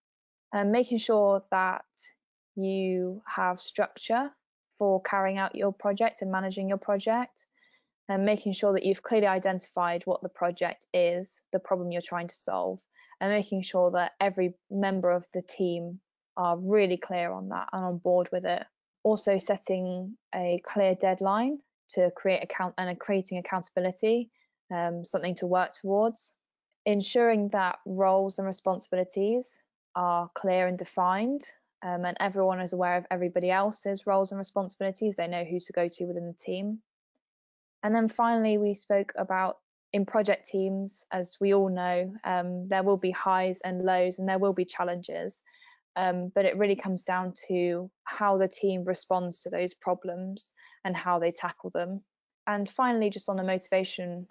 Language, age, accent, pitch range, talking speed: English, 20-39, British, 180-200 Hz, 160 wpm